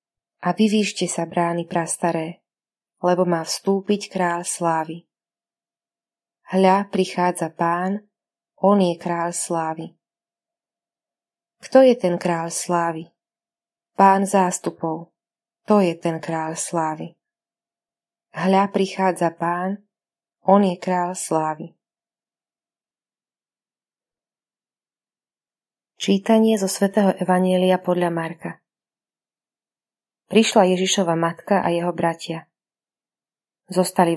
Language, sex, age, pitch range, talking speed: Slovak, female, 20-39, 170-195 Hz, 85 wpm